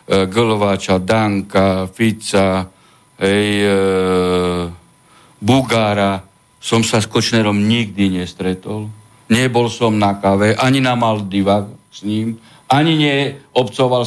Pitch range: 115-175 Hz